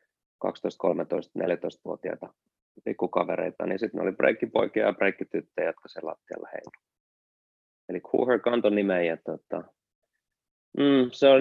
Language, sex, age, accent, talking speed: Finnish, male, 30-49, native, 115 wpm